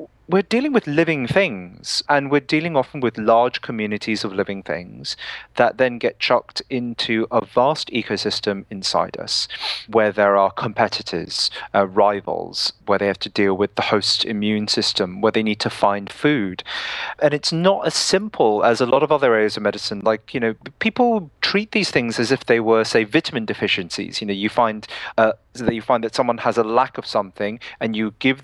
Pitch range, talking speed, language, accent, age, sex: 105-140 Hz, 190 wpm, English, British, 30-49, male